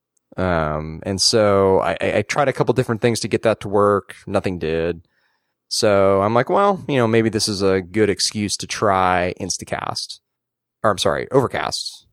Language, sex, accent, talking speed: English, male, American, 180 wpm